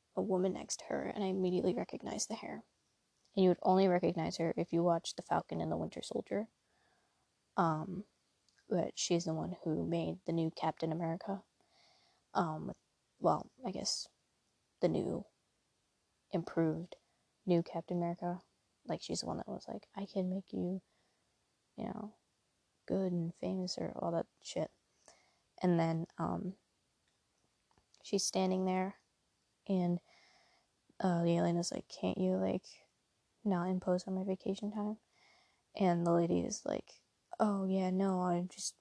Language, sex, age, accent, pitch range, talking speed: English, female, 20-39, American, 170-190 Hz, 150 wpm